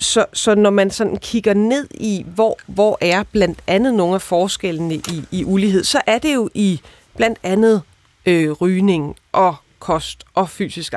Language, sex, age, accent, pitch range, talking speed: Danish, female, 30-49, native, 160-215 Hz, 175 wpm